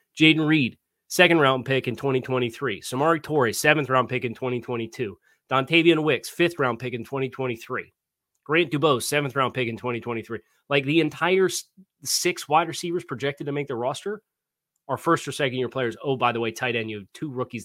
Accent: American